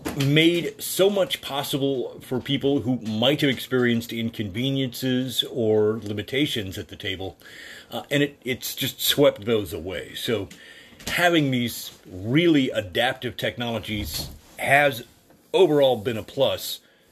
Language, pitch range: English, 100-130 Hz